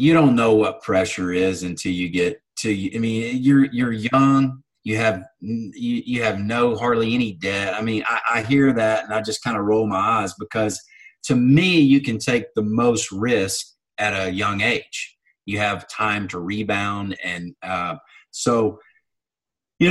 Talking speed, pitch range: 180 wpm, 110-145 Hz